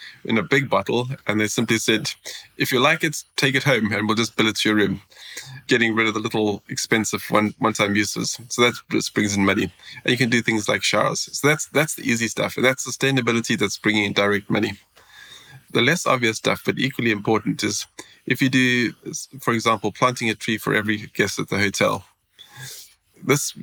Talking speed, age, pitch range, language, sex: 205 wpm, 20-39, 105-125 Hz, English, male